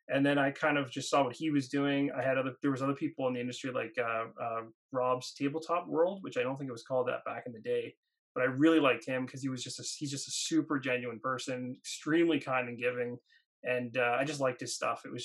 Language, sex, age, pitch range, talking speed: English, male, 20-39, 130-165 Hz, 270 wpm